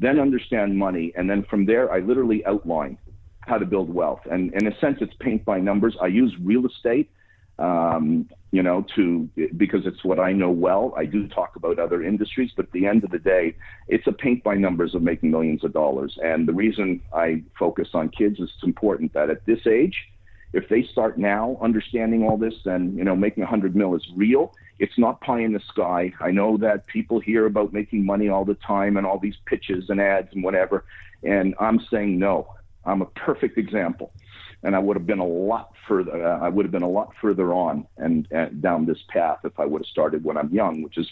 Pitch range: 90-105 Hz